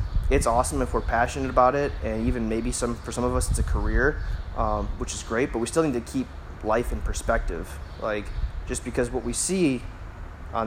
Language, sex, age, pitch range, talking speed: English, male, 20-39, 95-115 Hz, 215 wpm